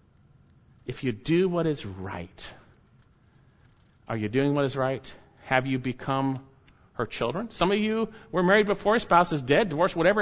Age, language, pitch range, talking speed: 40-59, English, 110-135 Hz, 170 wpm